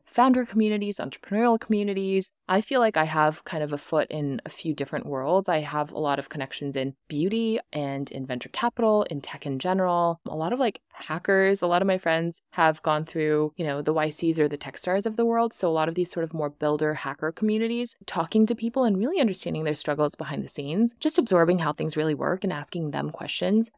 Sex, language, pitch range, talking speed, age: female, English, 145-185 Hz, 225 wpm, 20-39